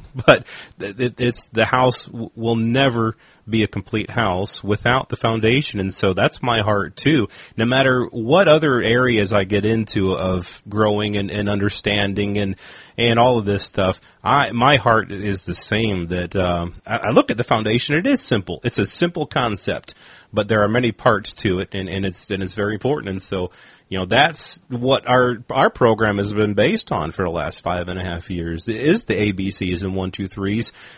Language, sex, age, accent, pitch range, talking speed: English, male, 30-49, American, 100-125 Hz, 190 wpm